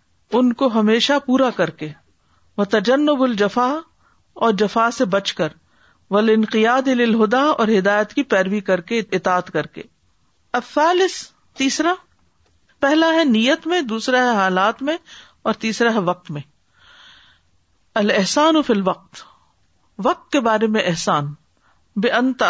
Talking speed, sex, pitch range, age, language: 135 wpm, female, 195-270 Hz, 50-69, Urdu